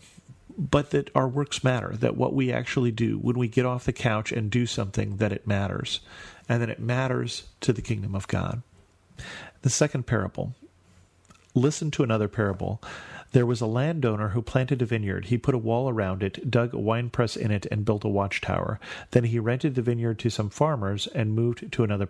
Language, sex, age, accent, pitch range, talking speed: English, male, 40-59, American, 105-130 Hz, 200 wpm